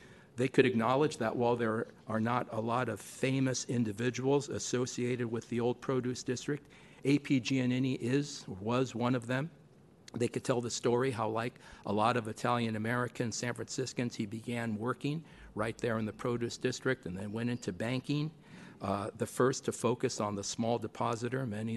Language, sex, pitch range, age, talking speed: English, male, 110-125 Hz, 50-69, 175 wpm